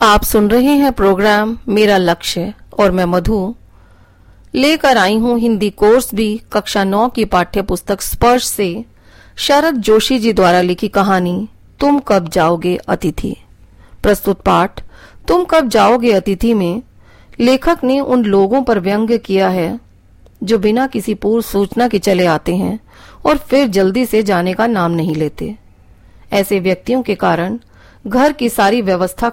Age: 40-59